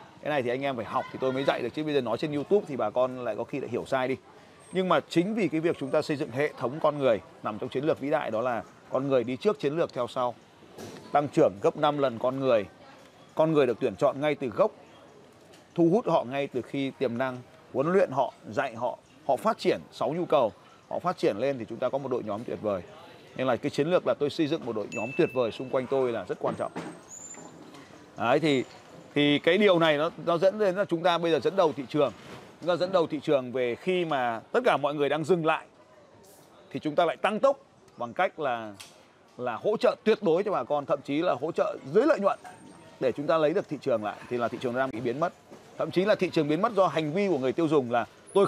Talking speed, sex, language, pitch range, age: 270 wpm, male, Vietnamese, 130-170 Hz, 30-49